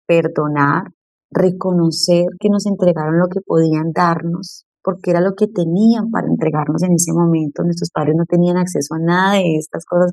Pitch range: 155-180 Hz